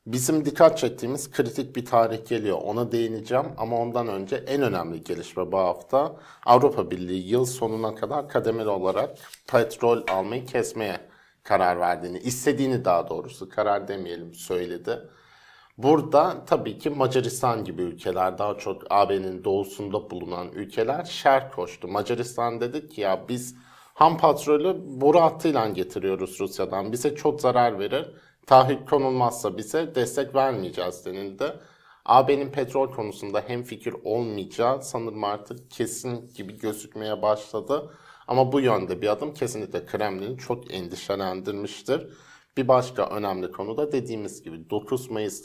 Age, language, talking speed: 50-69, Turkish, 130 wpm